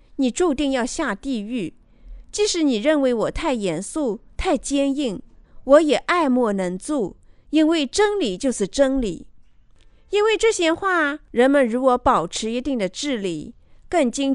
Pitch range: 220-320 Hz